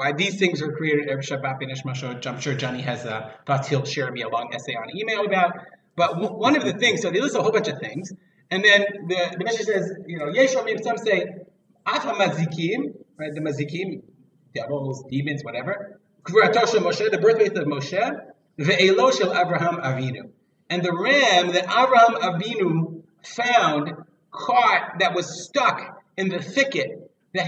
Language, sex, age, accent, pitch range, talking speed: English, male, 30-49, American, 145-205 Hz, 150 wpm